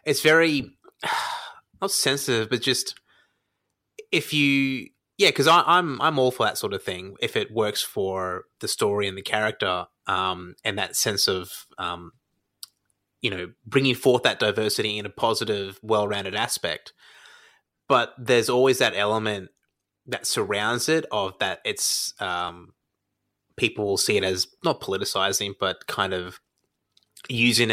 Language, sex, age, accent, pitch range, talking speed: English, male, 20-39, Australian, 100-135 Hz, 145 wpm